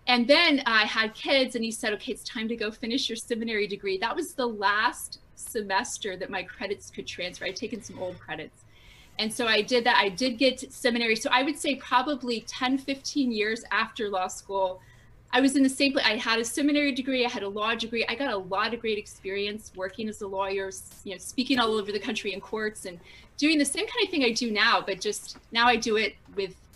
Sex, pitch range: female, 195-250 Hz